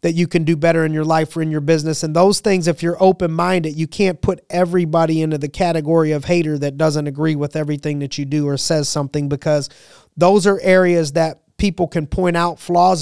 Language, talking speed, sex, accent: English, 220 wpm, male, American